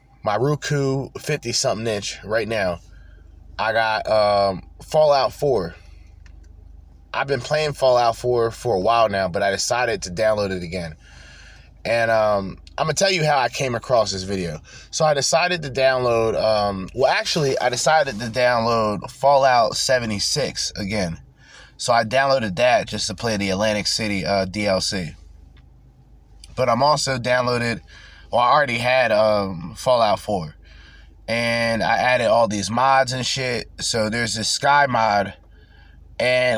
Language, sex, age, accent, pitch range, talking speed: English, male, 20-39, American, 95-130 Hz, 150 wpm